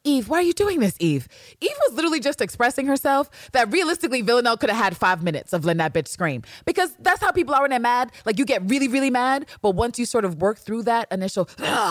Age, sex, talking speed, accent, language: 20-39, female, 245 wpm, American, English